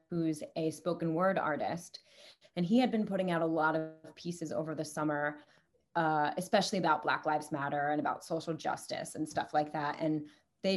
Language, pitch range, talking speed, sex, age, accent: English, 155-185 Hz, 190 wpm, female, 20-39, American